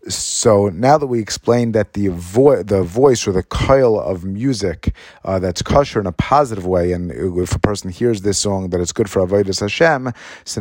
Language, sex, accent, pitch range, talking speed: English, male, American, 95-115 Hz, 205 wpm